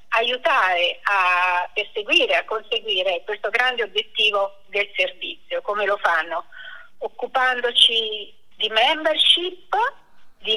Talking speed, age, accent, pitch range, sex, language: 95 wpm, 50-69, native, 215-320 Hz, female, Italian